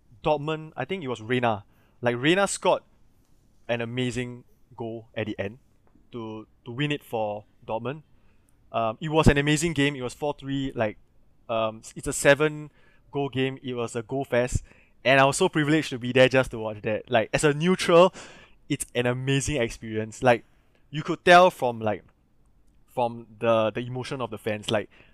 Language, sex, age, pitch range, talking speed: English, male, 20-39, 115-145 Hz, 180 wpm